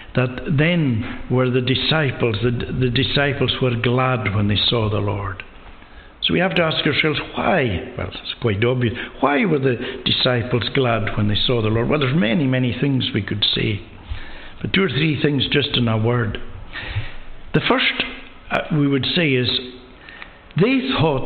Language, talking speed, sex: English, 170 wpm, male